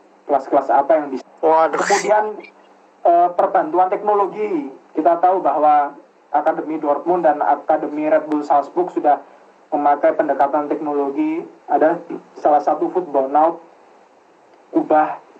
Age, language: 30-49, Indonesian